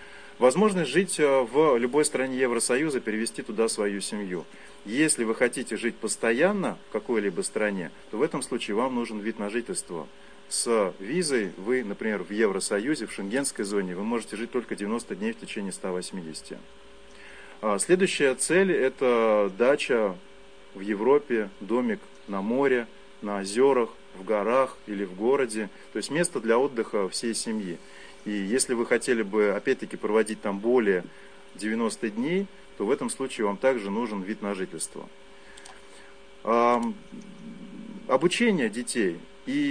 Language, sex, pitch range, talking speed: Russian, male, 100-145 Hz, 140 wpm